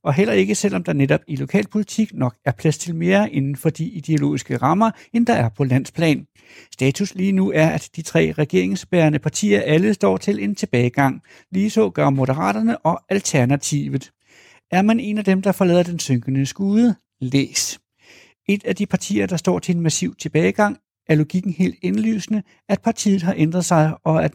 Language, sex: Danish, male